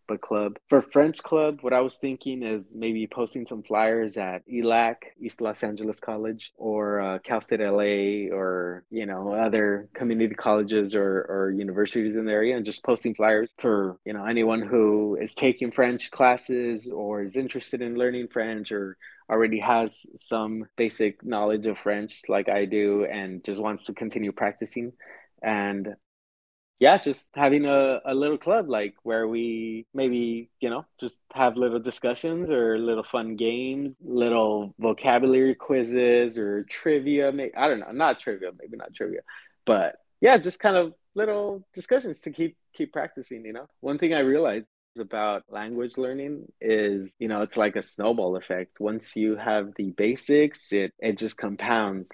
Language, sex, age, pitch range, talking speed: English, male, 20-39, 105-125 Hz, 170 wpm